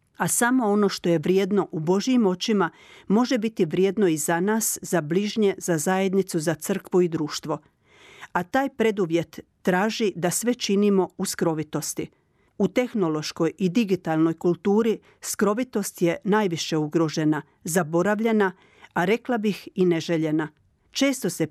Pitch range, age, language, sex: 170-215 Hz, 50-69, Croatian, female